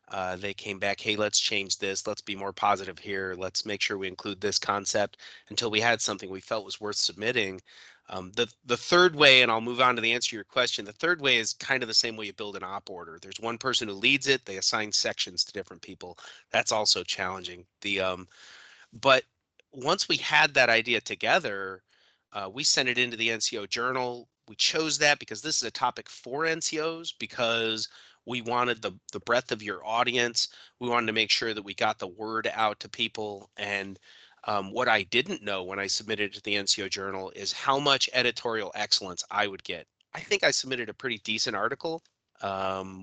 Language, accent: English, American